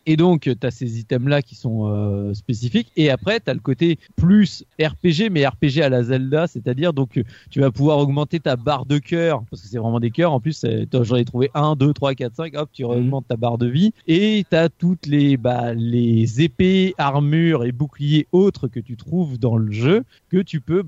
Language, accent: French, French